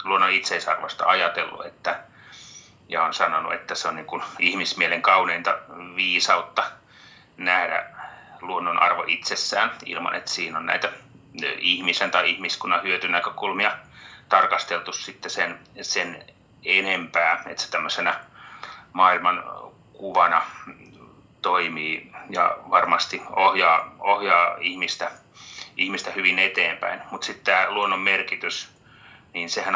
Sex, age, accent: male, 30-49, native